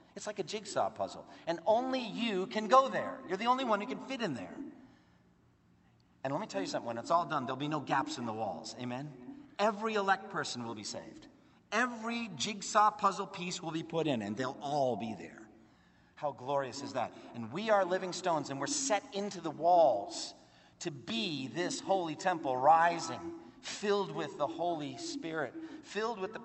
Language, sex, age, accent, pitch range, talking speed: English, male, 40-59, American, 140-230 Hz, 195 wpm